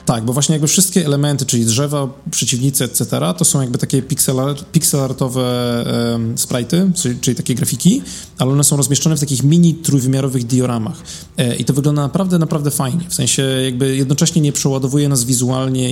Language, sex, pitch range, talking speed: Polish, male, 125-160 Hz, 160 wpm